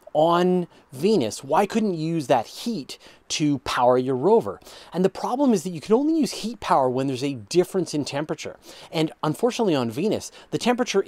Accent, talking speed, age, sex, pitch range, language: American, 190 wpm, 30-49, male, 120-180 Hz, English